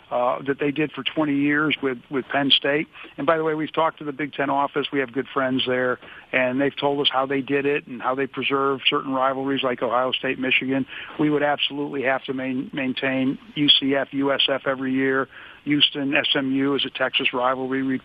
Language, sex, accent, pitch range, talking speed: English, male, American, 130-150 Hz, 205 wpm